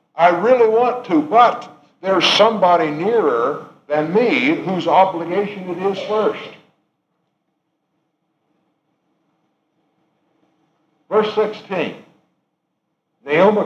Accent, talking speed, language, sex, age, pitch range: American, 80 wpm, English, male, 60-79, 155-220 Hz